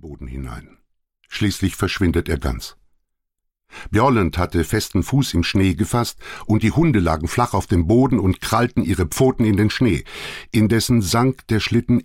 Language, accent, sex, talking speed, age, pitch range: German, German, male, 160 wpm, 60-79, 85-115 Hz